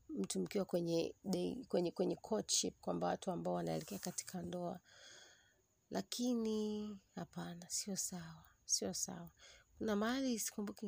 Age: 30-49